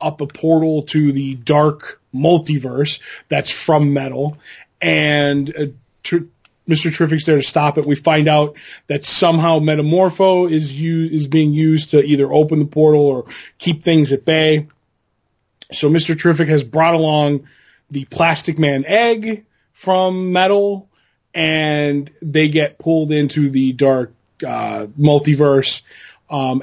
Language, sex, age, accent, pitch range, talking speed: English, male, 20-39, American, 140-165 Hz, 135 wpm